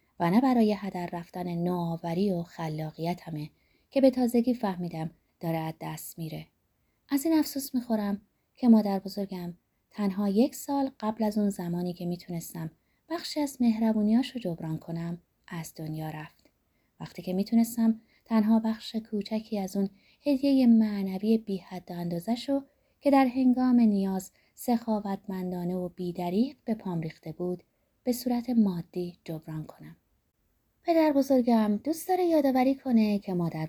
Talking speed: 135 wpm